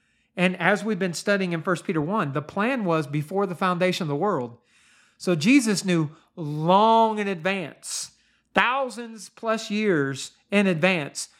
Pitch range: 160-215 Hz